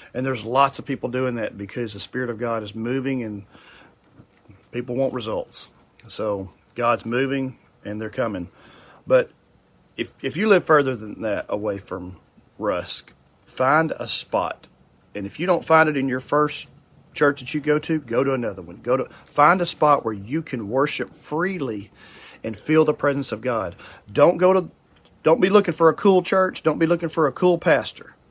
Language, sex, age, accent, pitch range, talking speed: English, male, 40-59, American, 120-150 Hz, 190 wpm